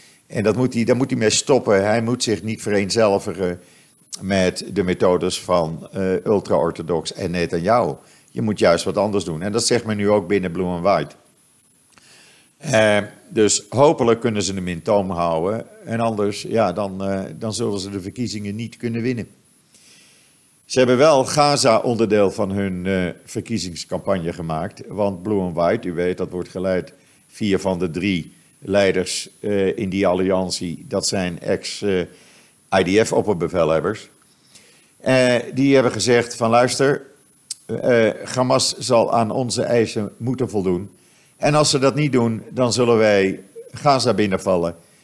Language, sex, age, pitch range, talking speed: Dutch, male, 50-69, 95-115 Hz, 155 wpm